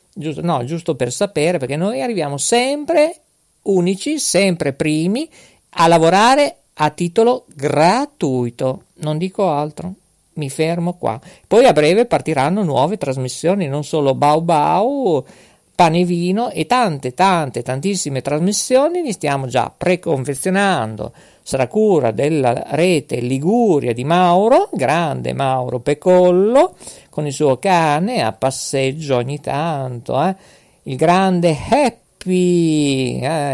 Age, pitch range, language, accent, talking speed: 50-69, 135-195 Hz, Italian, native, 120 wpm